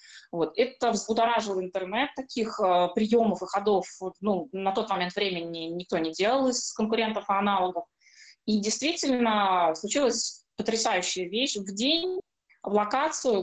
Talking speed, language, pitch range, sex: 140 wpm, Russian, 185-230 Hz, female